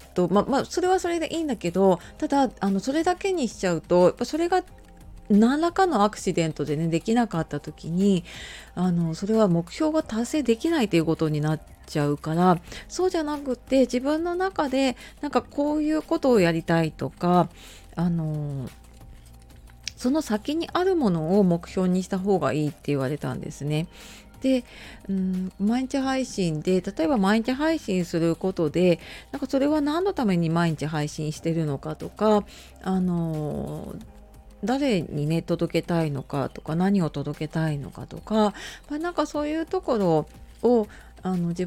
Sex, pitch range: female, 165-260 Hz